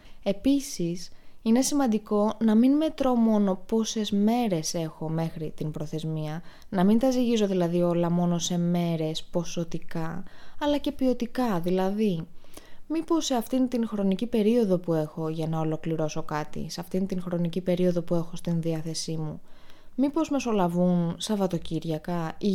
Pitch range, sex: 170-215 Hz, female